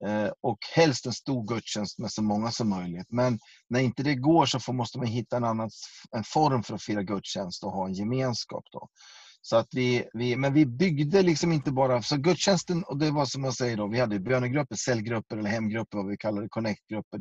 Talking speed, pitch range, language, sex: 215 wpm, 105-140 Hz, Swedish, male